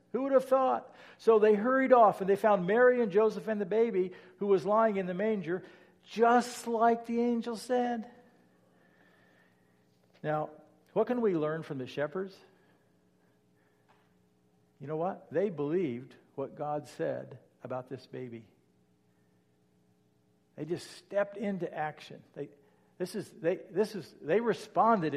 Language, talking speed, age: English, 145 wpm, 60-79